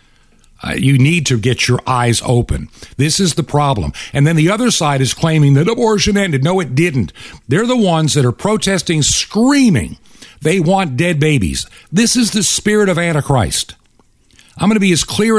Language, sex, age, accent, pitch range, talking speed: English, male, 60-79, American, 120-165 Hz, 185 wpm